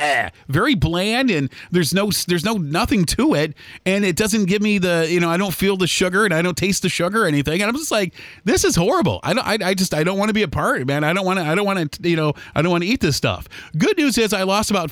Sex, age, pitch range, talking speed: male, 40-59, 135-180 Hz, 300 wpm